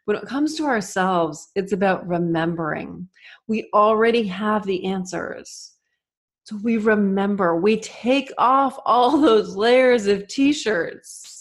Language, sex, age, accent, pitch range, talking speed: English, female, 30-49, American, 180-225 Hz, 125 wpm